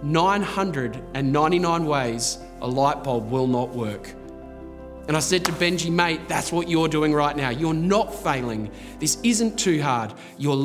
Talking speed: 160 wpm